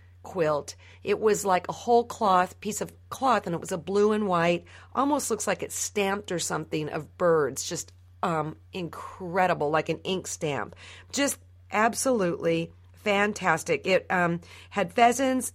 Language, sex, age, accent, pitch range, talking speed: English, female, 50-69, American, 155-200 Hz, 155 wpm